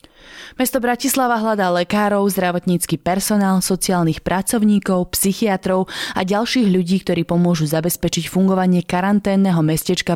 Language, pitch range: Slovak, 170-200 Hz